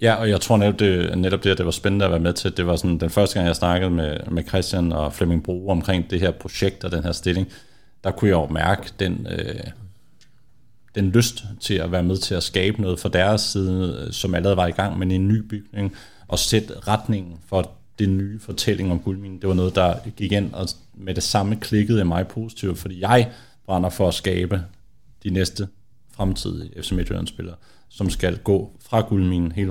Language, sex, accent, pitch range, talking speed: Danish, male, native, 90-105 Hz, 220 wpm